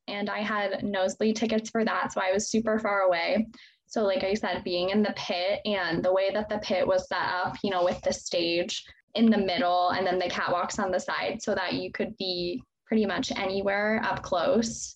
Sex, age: female, 10-29